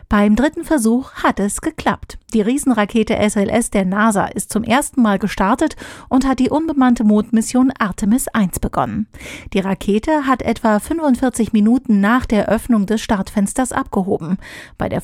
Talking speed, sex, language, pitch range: 150 wpm, female, German, 205-250 Hz